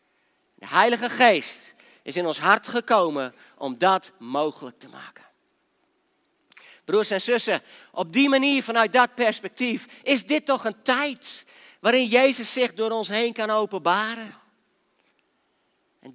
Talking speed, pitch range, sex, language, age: 135 wpm, 160-235 Hz, male, Dutch, 50-69